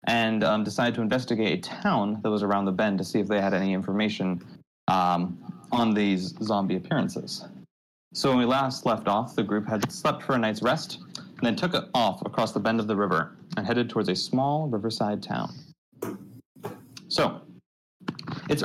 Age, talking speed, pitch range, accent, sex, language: 30-49, 185 wpm, 100-125 Hz, American, male, English